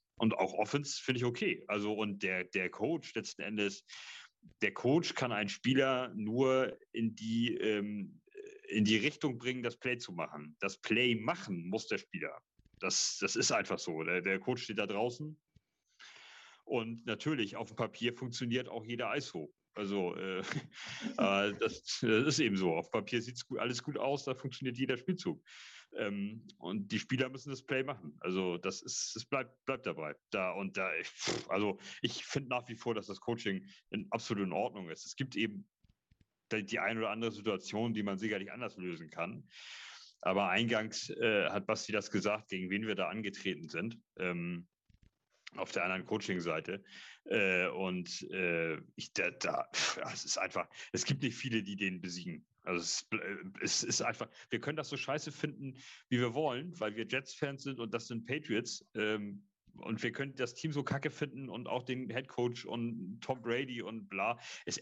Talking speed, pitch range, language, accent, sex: 180 wpm, 105-130 Hz, German, German, male